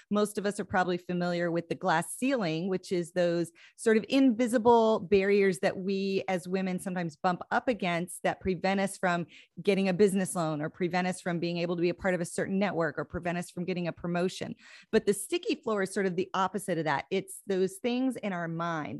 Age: 30-49